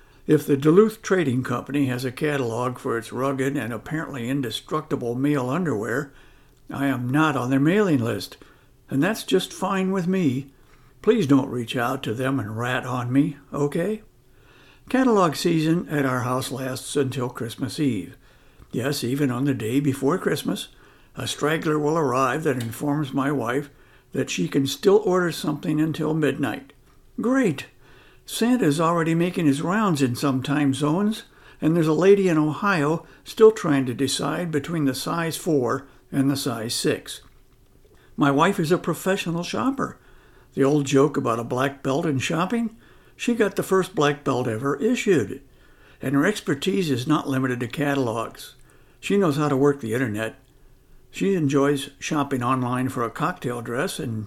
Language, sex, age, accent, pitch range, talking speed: English, male, 60-79, American, 130-160 Hz, 165 wpm